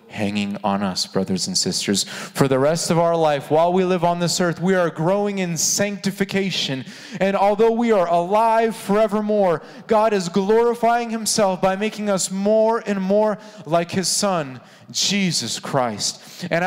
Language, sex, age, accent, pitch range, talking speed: English, male, 30-49, American, 145-205 Hz, 160 wpm